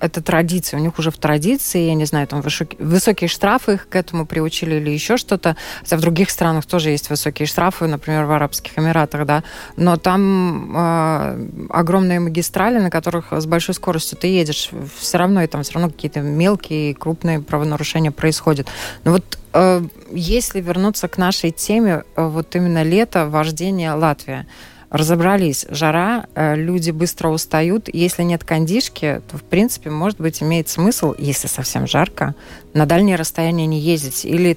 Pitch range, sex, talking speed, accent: 150-180 Hz, female, 165 wpm, native